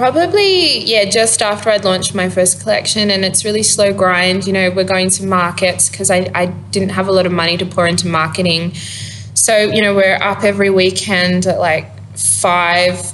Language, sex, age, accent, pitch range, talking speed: English, female, 20-39, Australian, 170-200 Hz, 195 wpm